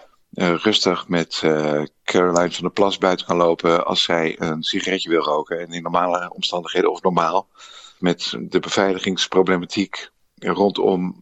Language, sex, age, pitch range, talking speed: Dutch, male, 50-69, 90-105 Hz, 145 wpm